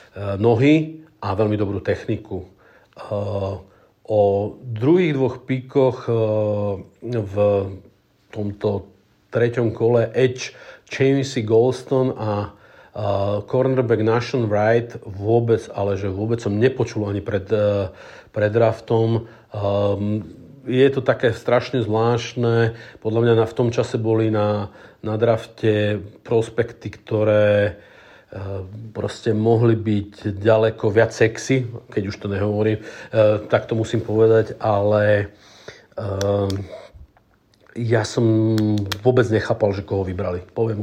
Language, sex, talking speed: Slovak, male, 105 wpm